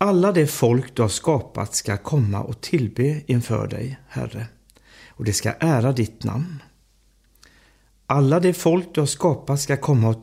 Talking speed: 165 wpm